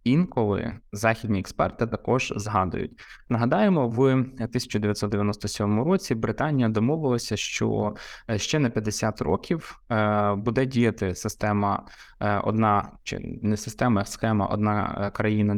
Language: Ukrainian